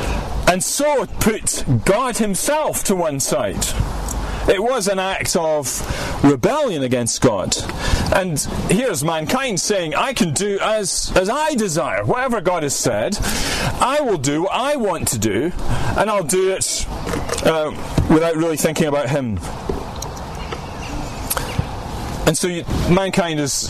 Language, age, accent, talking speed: English, 40-59, British, 140 wpm